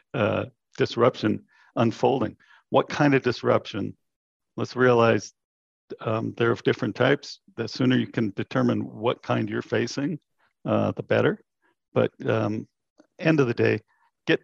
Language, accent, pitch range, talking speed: English, American, 105-130 Hz, 135 wpm